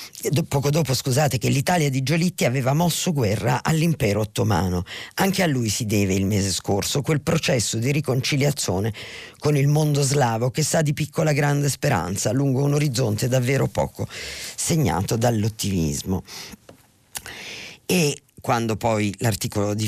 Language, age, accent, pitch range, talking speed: Italian, 40-59, native, 100-130 Hz, 140 wpm